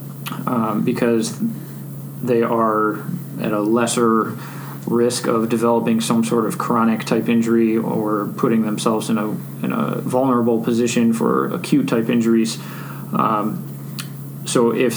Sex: male